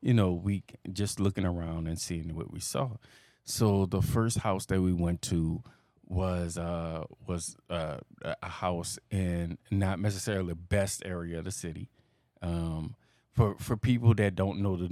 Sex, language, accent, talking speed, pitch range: male, English, American, 170 wpm, 85-105 Hz